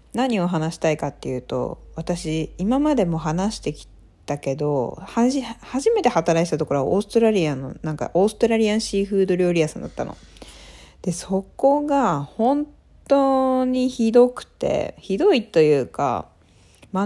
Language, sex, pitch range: Japanese, female, 150-225 Hz